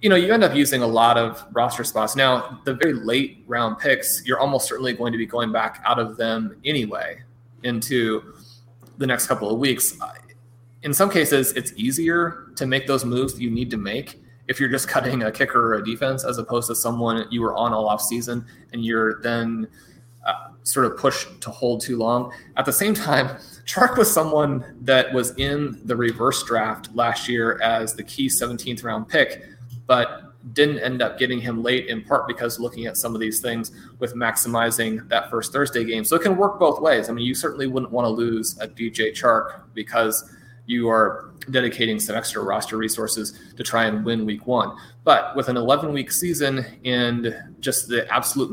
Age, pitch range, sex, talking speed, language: 30-49, 115-130 Hz, male, 200 wpm, English